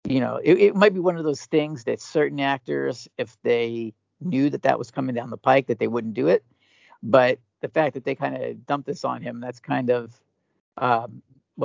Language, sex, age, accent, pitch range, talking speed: English, male, 50-69, American, 115-140 Hz, 220 wpm